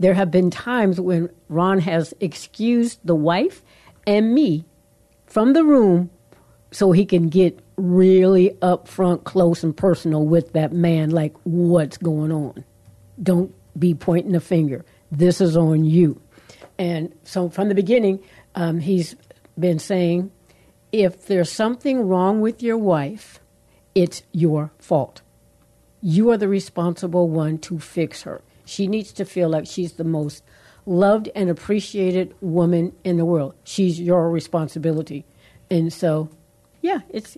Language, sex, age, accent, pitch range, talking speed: English, female, 60-79, American, 160-200 Hz, 145 wpm